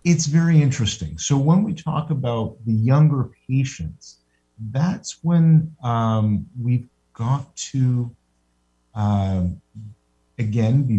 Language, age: English, 50-69